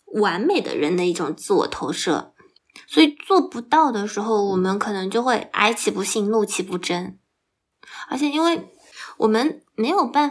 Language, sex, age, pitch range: Chinese, female, 20-39, 205-270 Hz